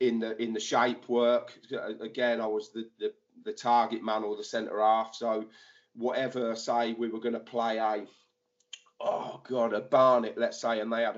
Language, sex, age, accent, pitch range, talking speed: English, male, 40-59, British, 110-125 Hz, 195 wpm